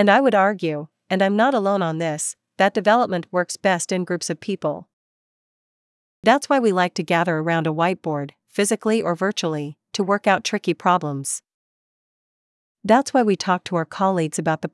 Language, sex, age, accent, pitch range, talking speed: English, female, 40-59, American, 165-205 Hz, 180 wpm